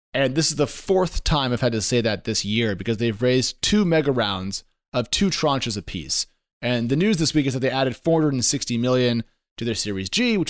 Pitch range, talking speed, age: 110-145 Hz, 225 wpm, 30-49